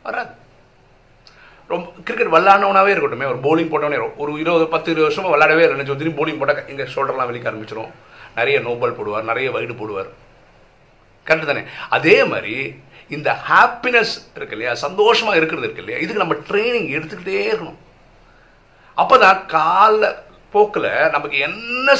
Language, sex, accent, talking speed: Tamil, male, native, 120 wpm